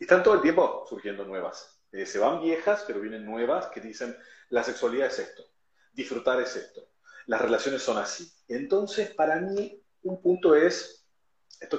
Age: 30-49